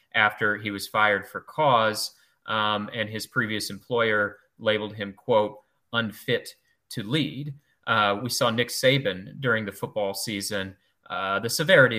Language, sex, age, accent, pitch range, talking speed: English, male, 30-49, American, 100-115 Hz, 145 wpm